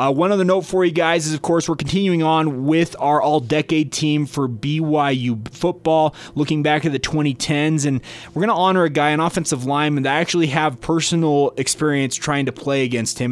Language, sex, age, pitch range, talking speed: English, male, 20-39, 130-155 Hz, 205 wpm